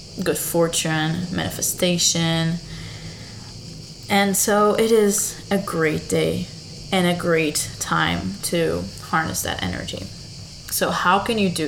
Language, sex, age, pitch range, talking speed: English, female, 20-39, 115-175 Hz, 120 wpm